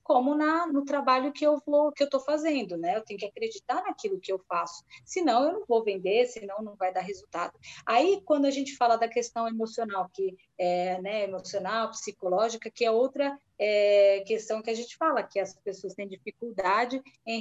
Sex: female